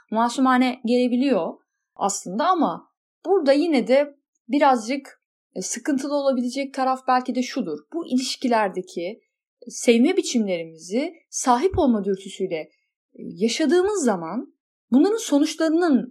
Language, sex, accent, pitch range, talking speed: Turkish, female, native, 205-290 Hz, 95 wpm